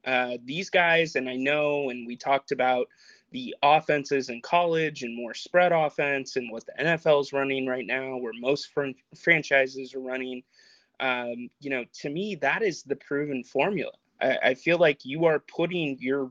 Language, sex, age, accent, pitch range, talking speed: English, male, 30-49, American, 130-175 Hz, 185 wpm